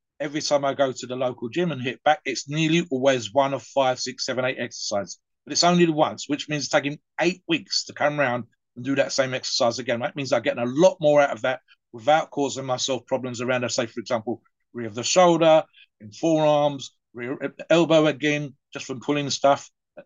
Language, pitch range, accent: English, 130-165 Hz, British